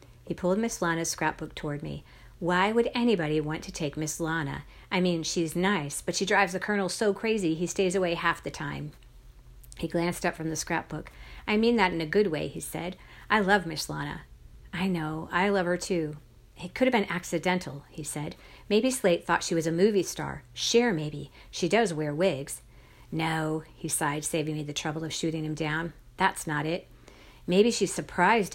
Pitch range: 155-190 Hz